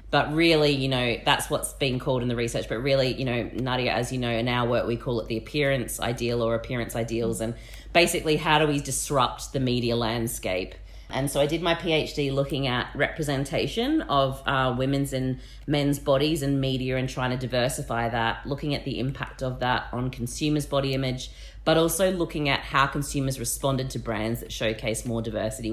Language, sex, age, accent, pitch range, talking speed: English, female, 30-49, Australian, 115-140 Hz, 200 wpm